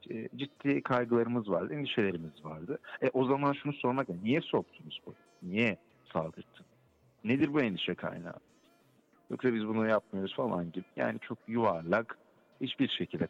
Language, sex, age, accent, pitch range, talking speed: German, male, 50-69, Turkish, 85-140 Hz, 135 wpm